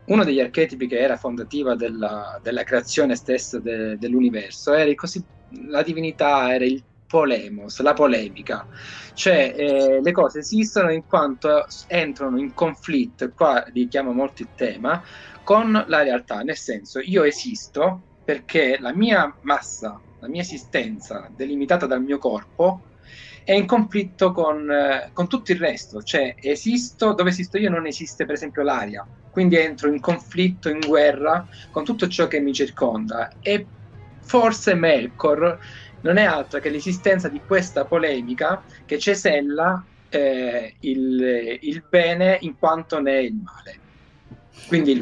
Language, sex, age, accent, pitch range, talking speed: Italian, male, 30-49, native, 125-180 Hz, 150 wpm